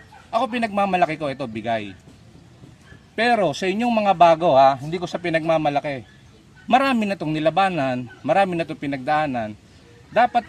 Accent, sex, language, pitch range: Filipino, male, English, 130-185 Hz